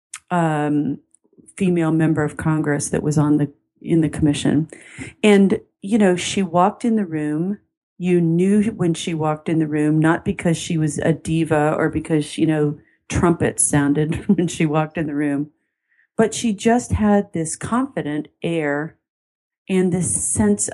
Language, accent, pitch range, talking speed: English, American, 160-200 Hz, 160 wpm